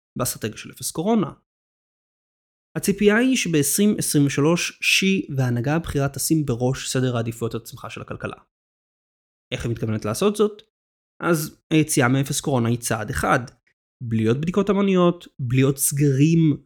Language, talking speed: Hebrew, 120 wpm